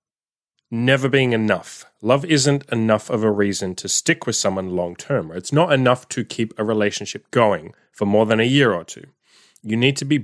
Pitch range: 105-130 Hz